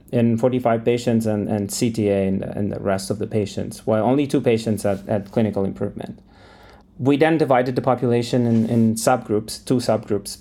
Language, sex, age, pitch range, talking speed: English, male, 30-49, 105-125 Hz, 185 wpm